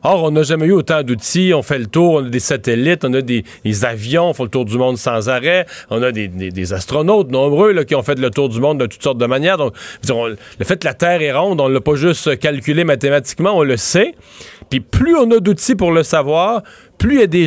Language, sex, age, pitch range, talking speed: French, male, 40-59, 145-190 Hz, 280 wpm